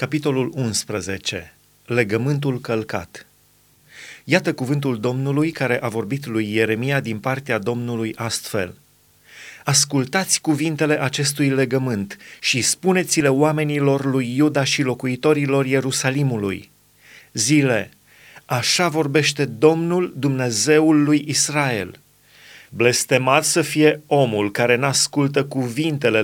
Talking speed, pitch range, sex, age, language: 95 wpm, 125-155 Hz, male, 30-49, Romanian